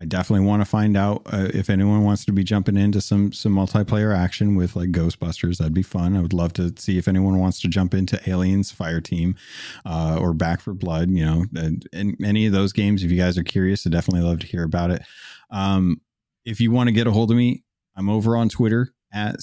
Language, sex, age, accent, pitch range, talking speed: English, male, 30-49, American, 90-110 Hz, 240 wpm